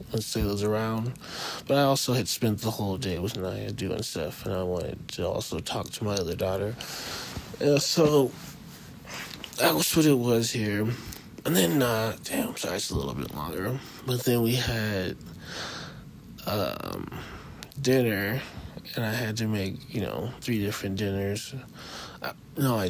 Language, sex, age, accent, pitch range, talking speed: English, male, 20-39, American, 105-125 Hz, 160 wpm